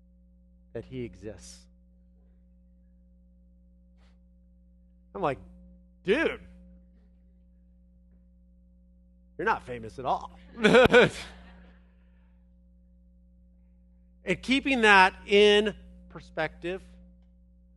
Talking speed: 55 wpm